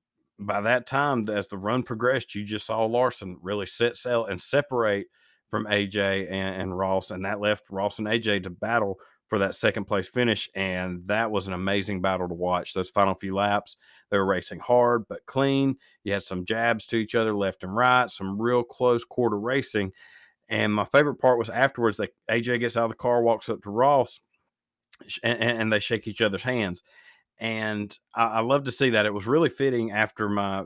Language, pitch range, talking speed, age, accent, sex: English, 95-115 Hz, 200 wpm, 40-59, American, male